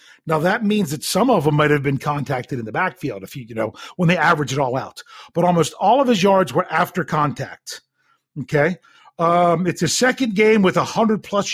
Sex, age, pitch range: male, 40-59, 140-190 Hz